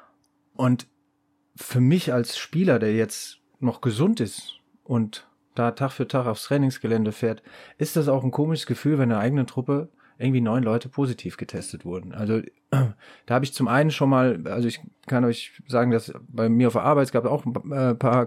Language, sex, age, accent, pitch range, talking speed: German, male, 30-49, German, 110-130 Hz, 195 wpm